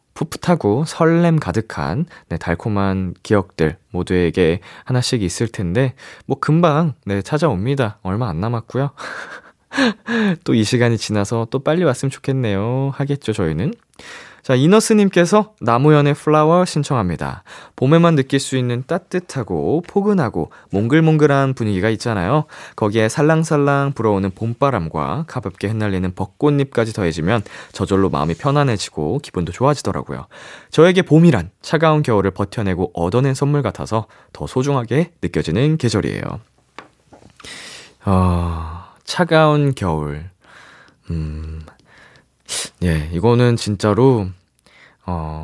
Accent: native